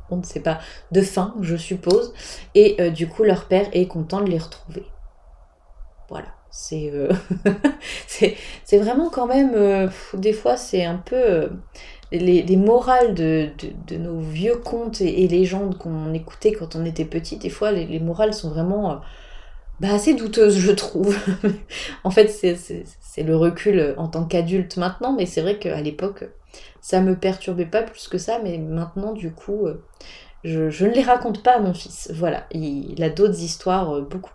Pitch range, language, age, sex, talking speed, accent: 165-210 Hz, French, 30-49, female, 185 wpm, French